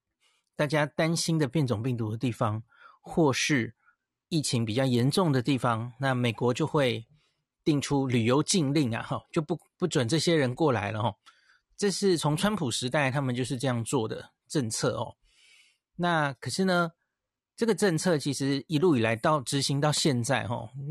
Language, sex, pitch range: Chinese, male, 125-165 Hz